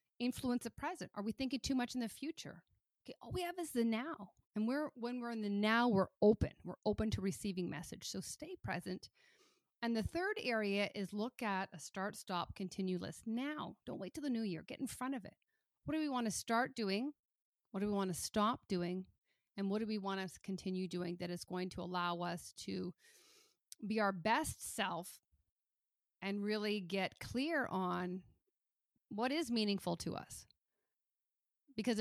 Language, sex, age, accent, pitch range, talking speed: English, female, 40-59, American, 190-245 Hz, 195 wpm